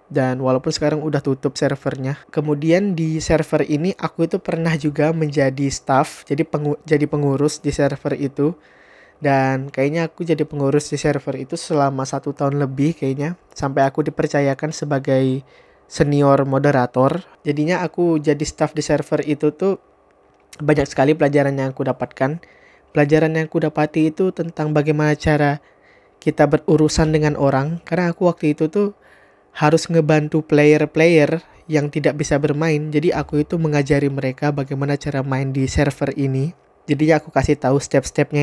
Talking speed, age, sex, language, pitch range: 150 wpm, 20-39, male, Indonesian, 140-155 Hz